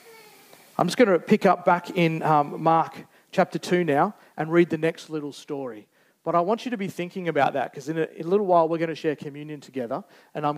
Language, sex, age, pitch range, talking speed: English, male, 40-59, 145-195 Hz, 240 wpm